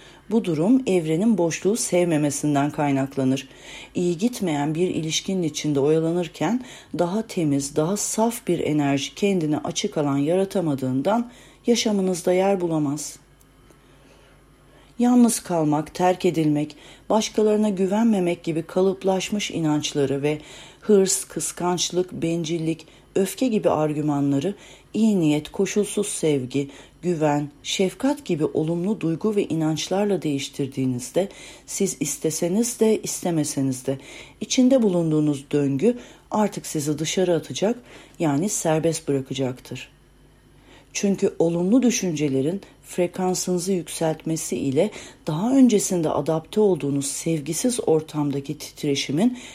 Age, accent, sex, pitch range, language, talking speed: 40-59, native, female, 145-195 Hz, Turkish, 100 wpm